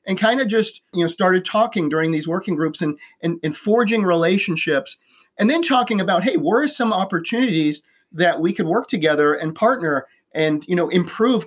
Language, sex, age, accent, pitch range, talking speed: English, male, 30-49, American, 165-215 Hz, 195 wpm